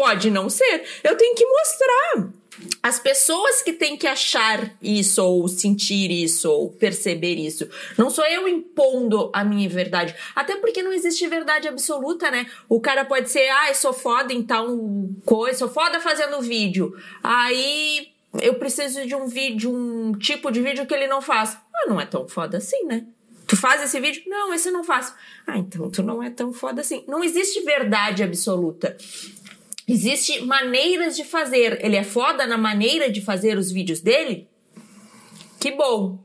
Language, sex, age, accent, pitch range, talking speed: Portuguese, female, 20-39, Brazilian, 210-295 Hz, 180 wpm